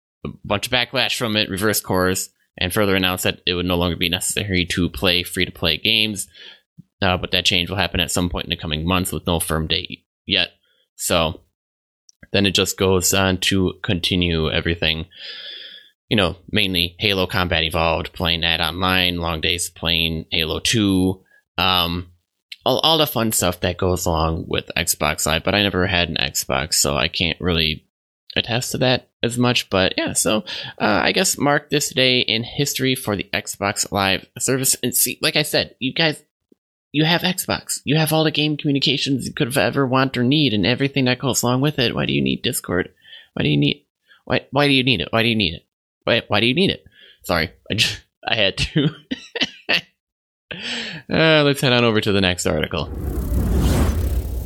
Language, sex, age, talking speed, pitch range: English, male, 20-39, 195 wpm, 85-120 Hz